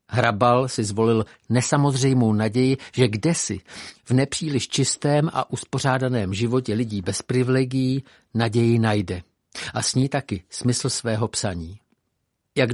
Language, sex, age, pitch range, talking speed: Czech, male, 50-69, 110-135 Hz, 125 wpm